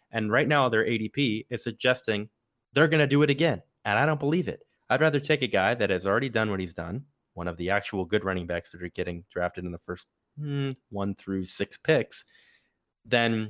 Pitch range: 95-130 Hz